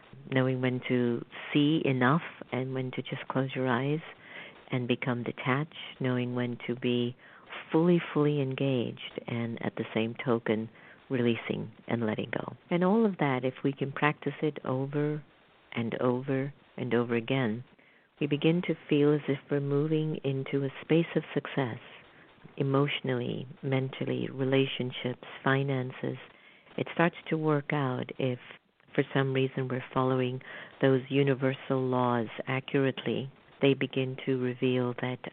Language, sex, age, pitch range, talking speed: English, female, 50-69, 125-145 Hz, 140 wpm